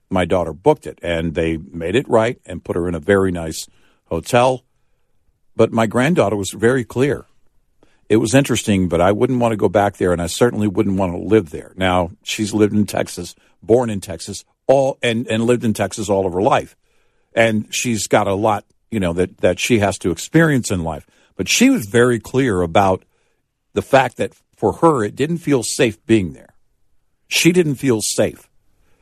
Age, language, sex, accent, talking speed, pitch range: 60-79, English, male, American, 200 wpm, 95-125 Hz